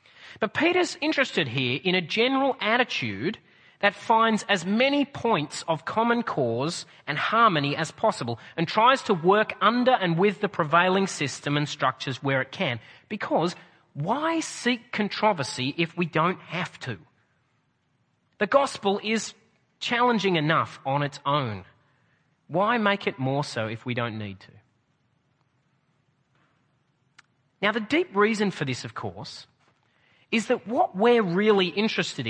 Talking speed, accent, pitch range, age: 140 wpm, Australian, 145-220 Hz, 30-49